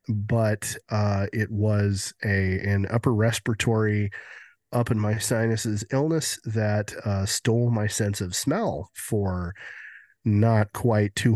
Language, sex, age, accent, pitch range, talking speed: English, male, 30-49, American, 100-120 Hz, 125 wpm